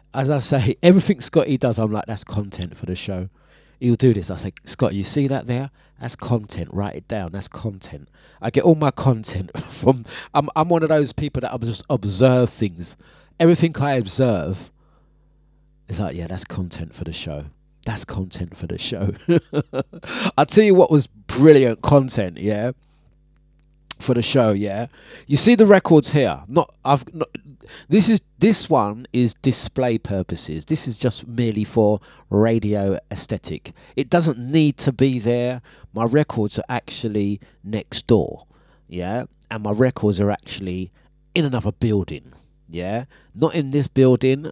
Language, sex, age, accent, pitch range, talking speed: English, male, 30-49, British, 100-140 Hz, 165 wpm